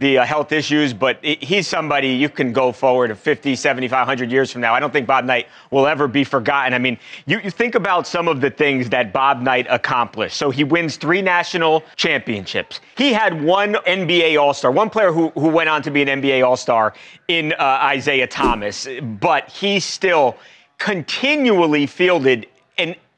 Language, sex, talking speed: English, male, 190 wpm